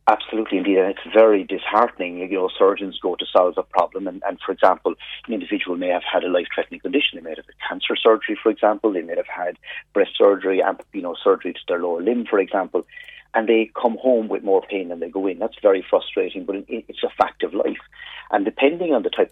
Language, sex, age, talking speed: English, male, 40-59, 230 wpm